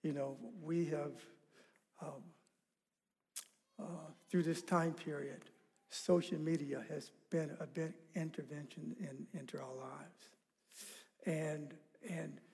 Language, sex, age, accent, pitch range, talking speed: English, male, 60-79, American, 155-200 Hz, 110 wpm